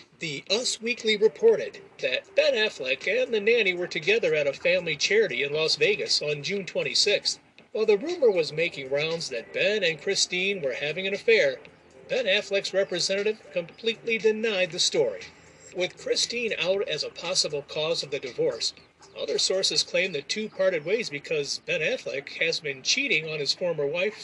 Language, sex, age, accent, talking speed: English, male, 40-59, American, 175 wpm